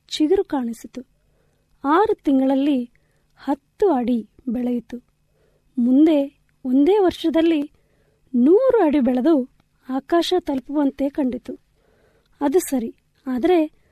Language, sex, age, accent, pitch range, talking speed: Kannada, female, 20-39, native, 260-320 Hz, 80 wpm